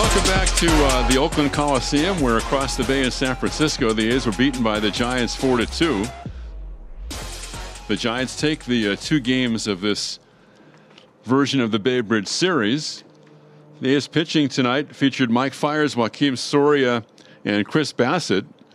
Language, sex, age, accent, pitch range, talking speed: English, male, 50-69, American, 110-140 Hz, 155 wpm